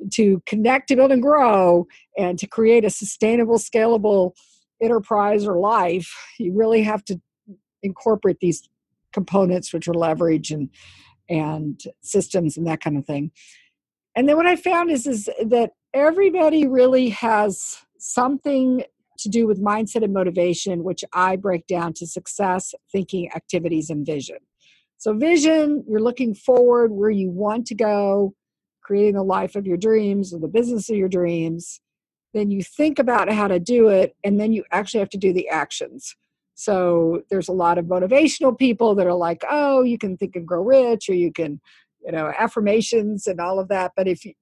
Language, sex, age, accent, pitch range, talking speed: English, female, 50-69, American, 180-230 Hz, 175 wpm